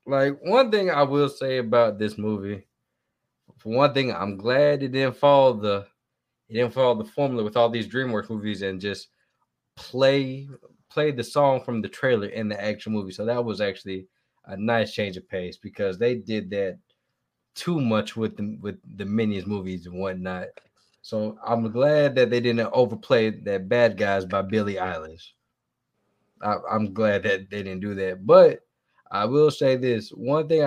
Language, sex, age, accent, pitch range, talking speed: English, male, 20-39, American, 105-135 Hz, 180 wpm